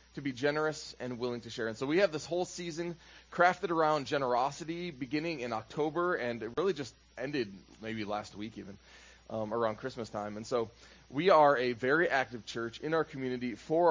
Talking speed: 195 wpm